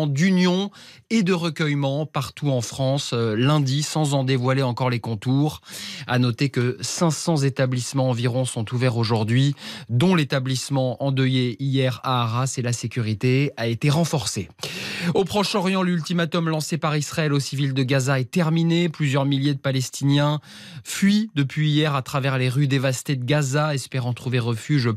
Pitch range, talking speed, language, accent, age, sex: 125-165 Hz, 155 wpm, French, French, 20-39, male